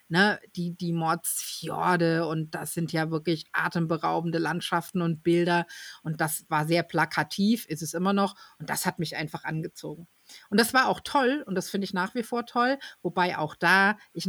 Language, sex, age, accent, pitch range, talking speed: German, female, 50-69, German, 165-210 Hz, 185 wpm